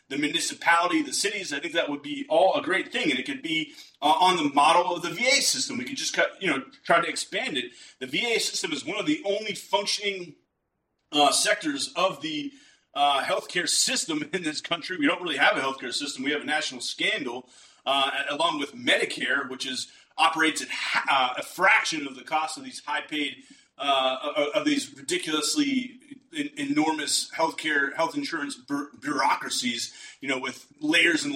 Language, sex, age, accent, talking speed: English, male, 30-49, American, 185 wpm